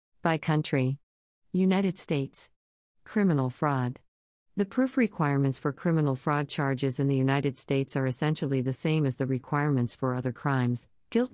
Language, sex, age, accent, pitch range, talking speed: English, female, 50-69, American, 135-155 Hz, 150 wpm